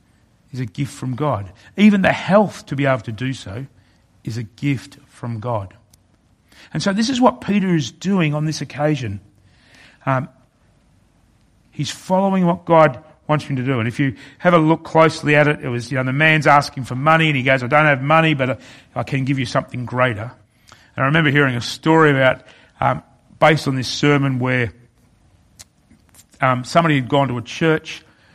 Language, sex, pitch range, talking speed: English, male, 125-160 Hz, 195 wpm